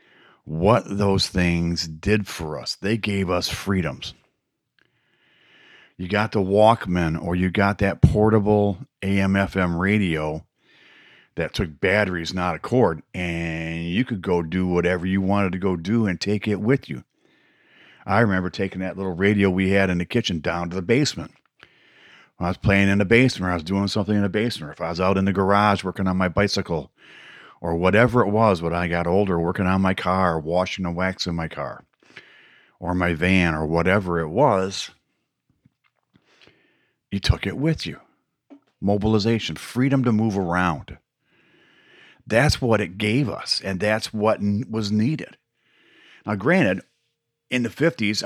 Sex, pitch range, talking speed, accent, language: male, 90-105 Hz, 170 wpm, American, English